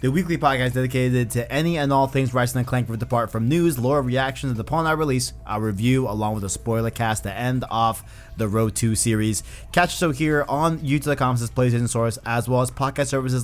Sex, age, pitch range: male, 20-39, 120-145 Hz